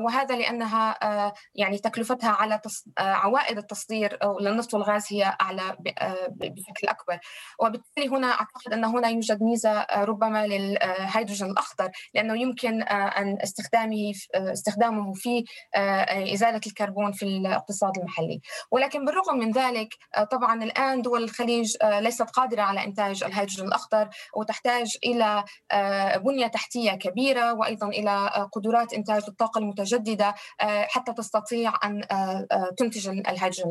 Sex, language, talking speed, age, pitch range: female, Arabic, 115 wpm, 20-39, 200-240 Hz